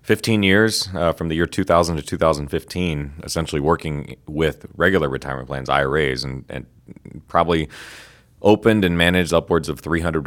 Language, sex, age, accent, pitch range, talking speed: English, male, 30-49, American, 75-85 Hz, 145 wpm